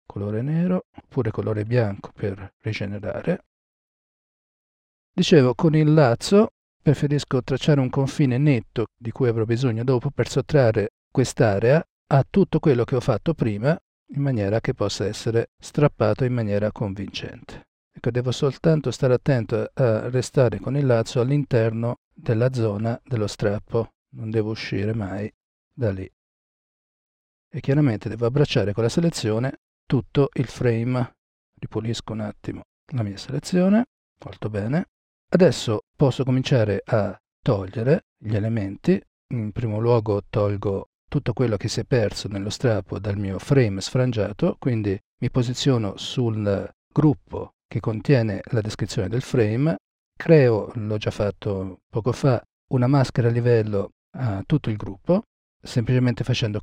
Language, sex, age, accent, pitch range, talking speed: Italian, male, 40-59, native, 105-140 Hz, 135 wpm